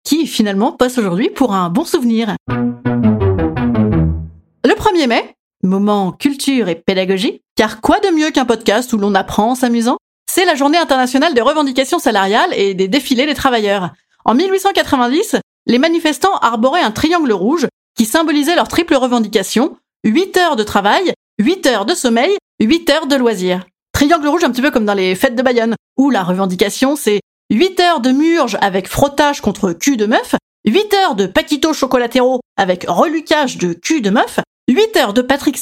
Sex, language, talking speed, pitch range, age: female, French, 175 wpm, 200-300 Hz, 30-49